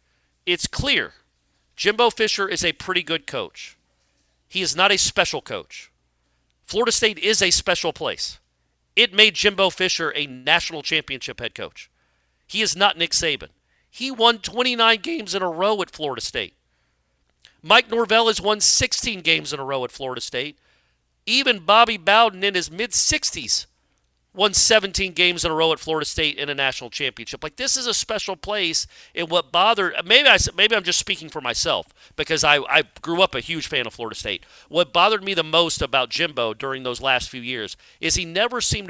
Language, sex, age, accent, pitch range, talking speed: English, male, 40-59, American, 130-200 Hz, 185 wpm